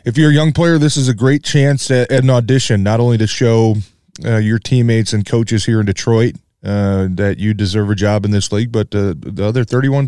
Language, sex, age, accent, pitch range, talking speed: English, male, 30-49, American, 110-135 Hz, 230 wpm